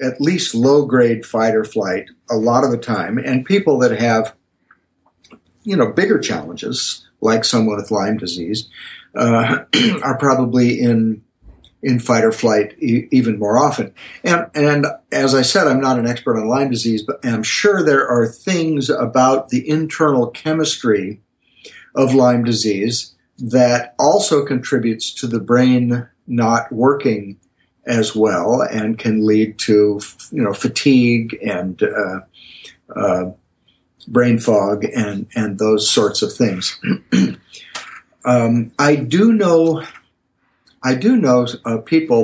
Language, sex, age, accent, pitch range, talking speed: English, male, 50-69, American, 110-140 Hz, 130 wpm